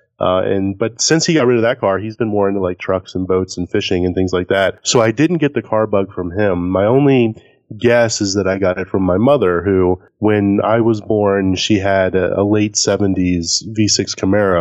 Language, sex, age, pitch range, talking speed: English, male, 30-49, 95-110 Hz, 235 wpm